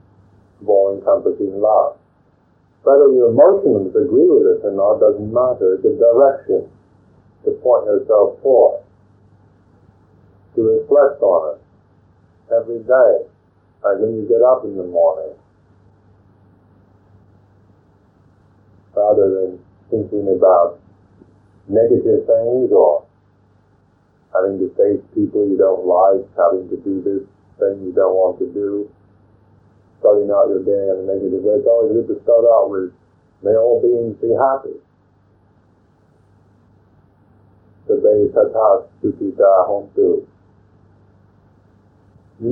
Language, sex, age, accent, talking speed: English, male, 50-69, American, 115 wpm